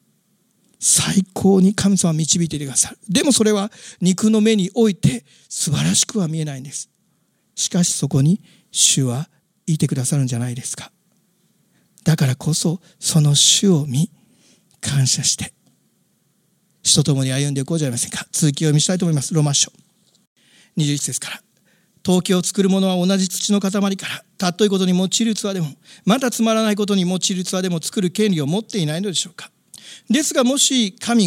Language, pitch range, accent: Japanese, 165-210 Hz, native